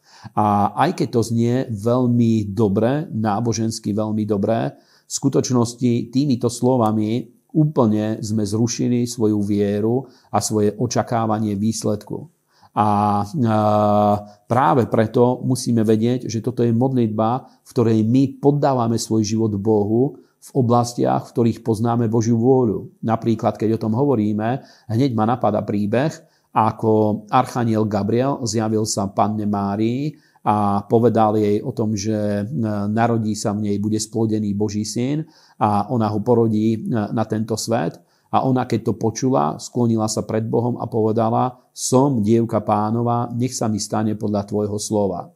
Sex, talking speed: male, 140 wpm